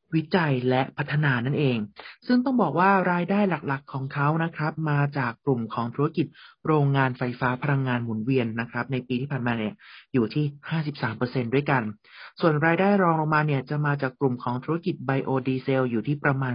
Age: 30-49